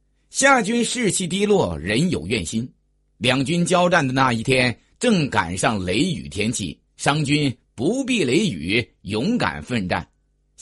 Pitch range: 130-200 Hz